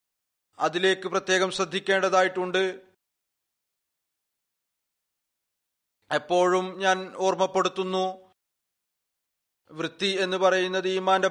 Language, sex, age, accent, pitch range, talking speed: Malayalam, male, 30-49, native, 180-190 Hz, 55 wpm